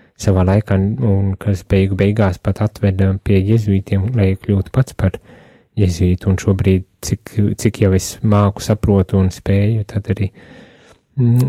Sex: male